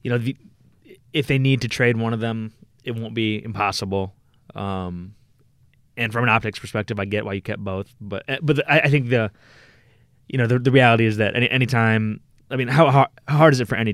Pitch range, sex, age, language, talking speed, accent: 95-120 Hz, male, 20-39, English, 230 wpm, American